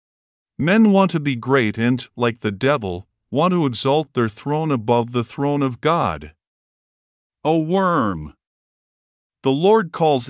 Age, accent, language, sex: 50-69, American, English, male